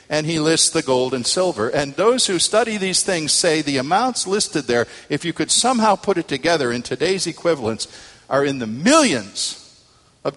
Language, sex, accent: English, male, American